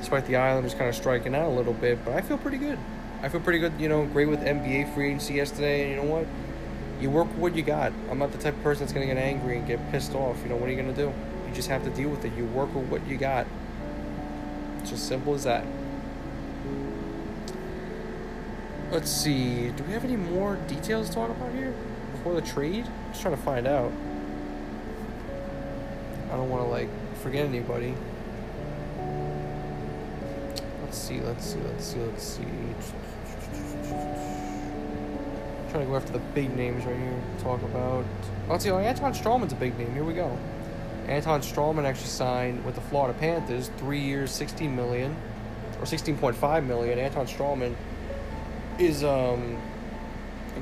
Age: 20-39